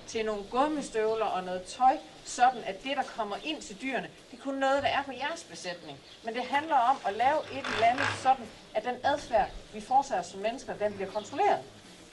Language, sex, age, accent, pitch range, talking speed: Danish, female, 40-59, native, 210-285 Hz, 215 wpm